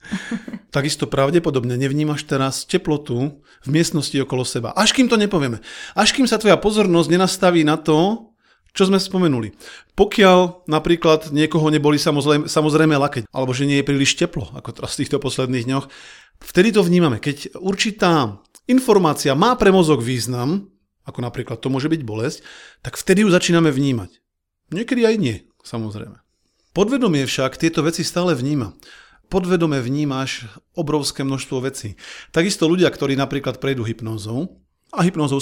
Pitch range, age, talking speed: 130-175 Hz, 40-59, 145 wpm